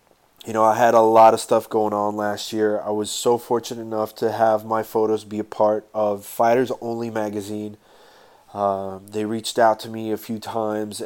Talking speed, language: 200 wpm, English